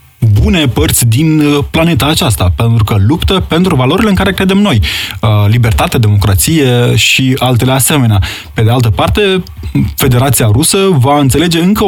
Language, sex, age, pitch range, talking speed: Romanian, male, 20-39, 105-140 Hz, 140 wpm